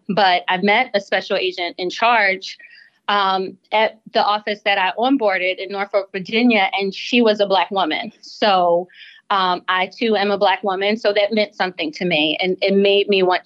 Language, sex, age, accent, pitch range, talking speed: English, female, 20-39, American, 195-240 Hz, 190 wpm